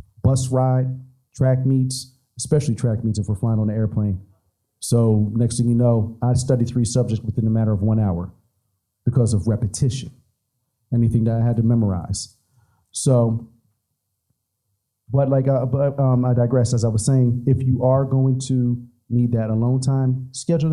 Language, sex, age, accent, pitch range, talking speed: English, male, 40-59, American, 110-130 Hz, 170 wpm